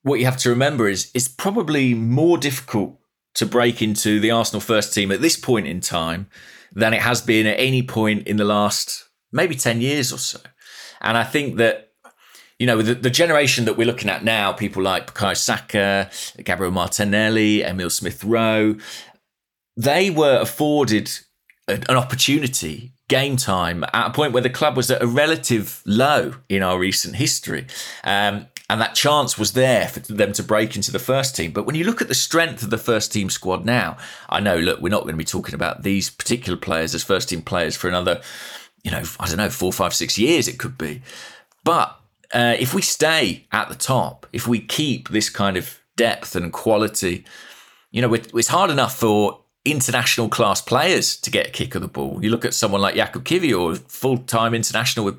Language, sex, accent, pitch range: English, male, British, 100-130 Hz